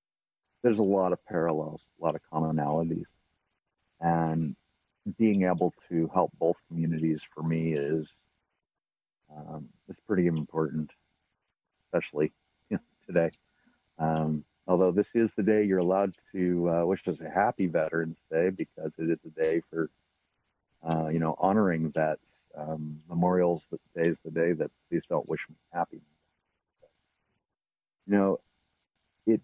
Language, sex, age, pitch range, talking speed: English, male, 50-69, 80-90 Hz, 145 wpm